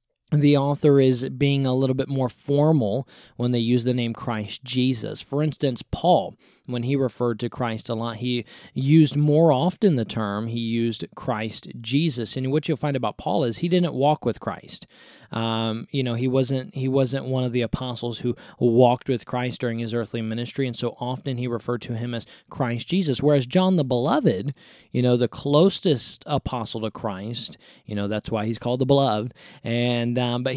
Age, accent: 20-39, American